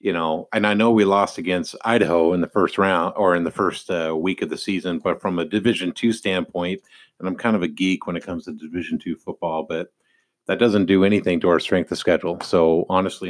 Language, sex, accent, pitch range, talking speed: English, male, American, 85-95 Hz, 240 wpm